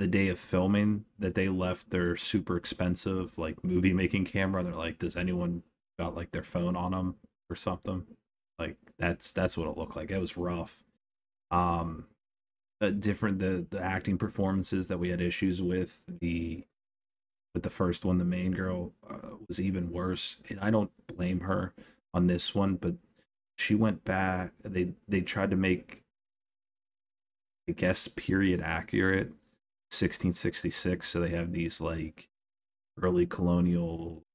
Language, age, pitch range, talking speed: English, 30-49, 85-95 Hz, 155 wpm